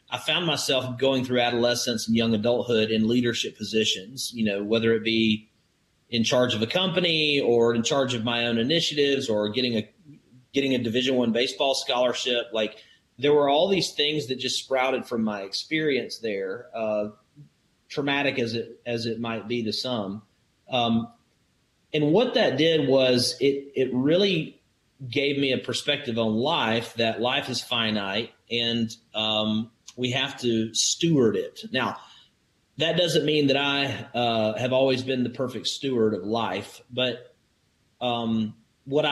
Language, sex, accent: English, male, American